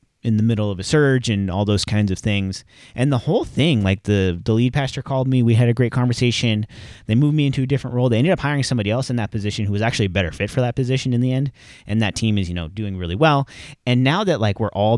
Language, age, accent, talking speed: English, 30-49, American, 285 wpm